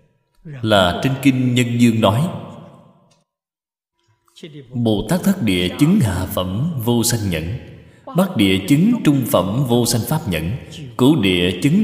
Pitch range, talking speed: 105-170 Hz, 140 wpm